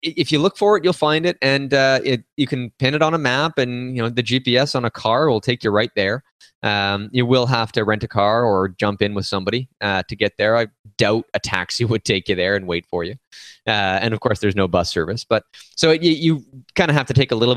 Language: English